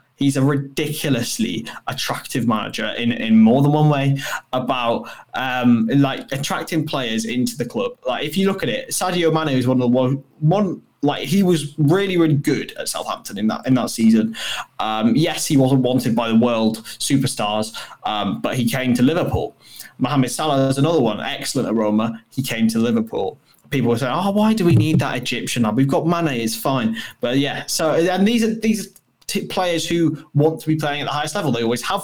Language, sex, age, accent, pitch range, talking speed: English, male, 20-39, British, 130-185 Hz, 200 wpm